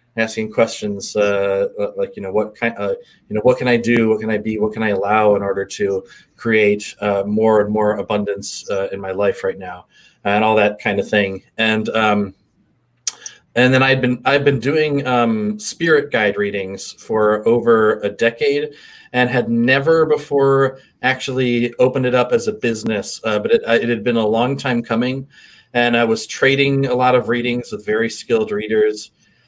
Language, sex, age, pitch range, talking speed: English, male, 30-49, 110-140 Hz, 190 wpm